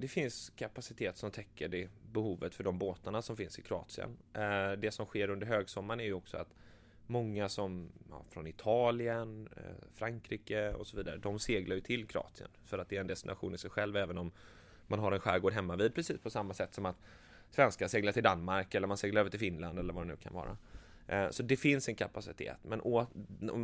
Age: 20-39